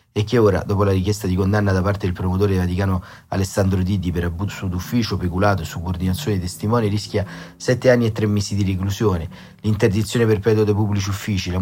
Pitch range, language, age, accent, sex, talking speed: 95-110 Hz, Italian, 30-49, native, male, 190 wpm